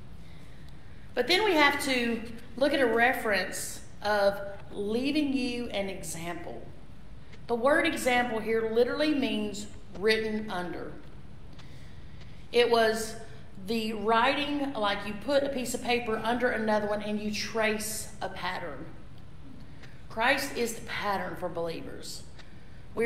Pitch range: 200-245 Hz